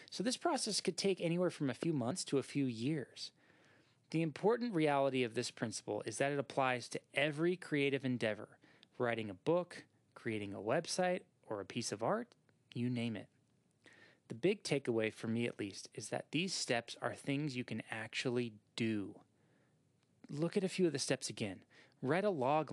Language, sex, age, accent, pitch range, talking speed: English, male, 20-39, American, 115-160 Hz, 185 wpm